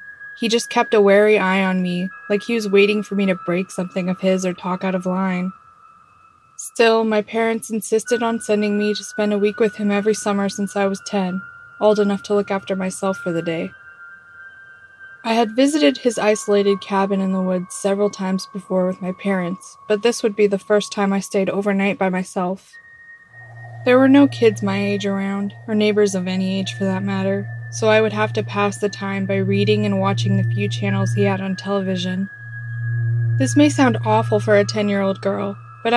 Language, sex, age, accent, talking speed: English, female, 20-39, American, 205 wpm